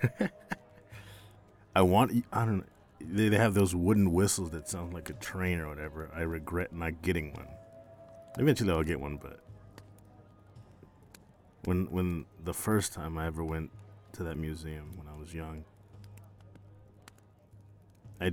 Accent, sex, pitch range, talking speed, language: American, male, 80-100 Hz, 140 wpm, English